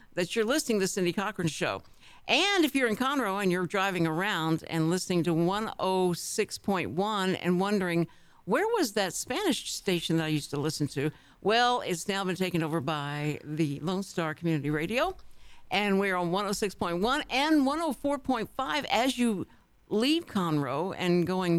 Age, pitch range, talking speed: 60-79, 165-215 Hz, 160 wpm